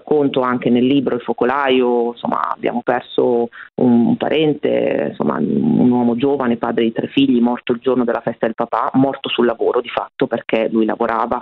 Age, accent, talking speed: 40-59, native, 180 wpm